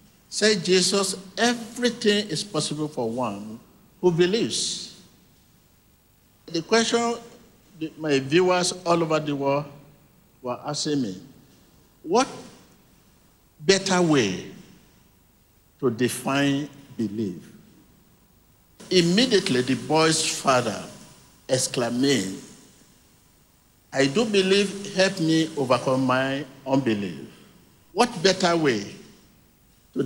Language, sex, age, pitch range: English, male, 50-69, 130-180 Hz